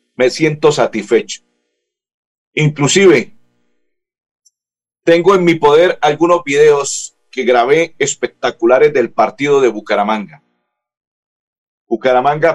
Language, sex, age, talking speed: Spanish, male, 40-59, 85 wpm